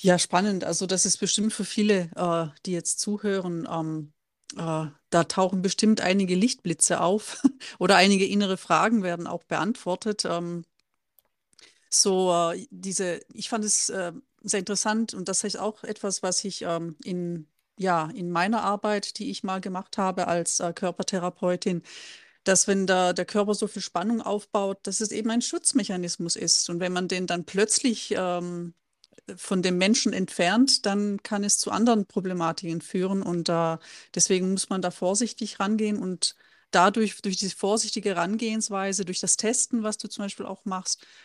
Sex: female